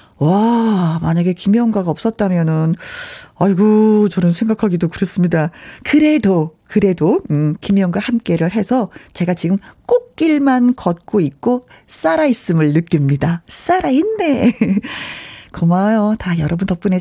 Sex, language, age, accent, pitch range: female, Korean, 40-59, native, 175-260 Hz